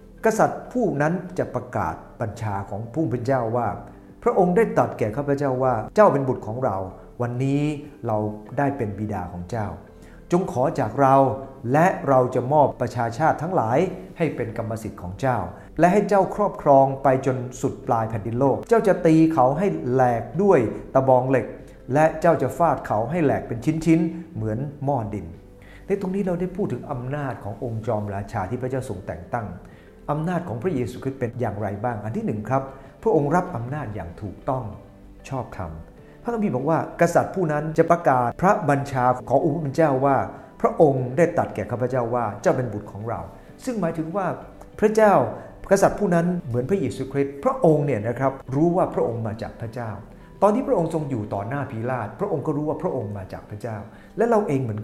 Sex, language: male, English